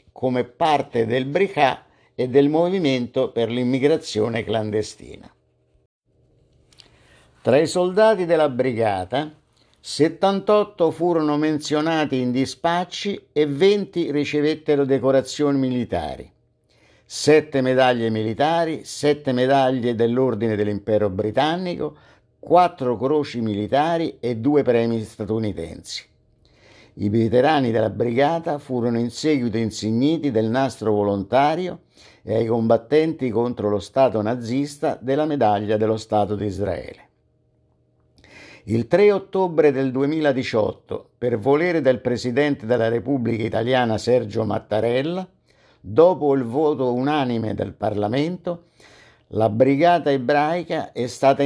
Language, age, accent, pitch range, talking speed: Italian, 50-69, native, 115-145 Hz, 105 wpm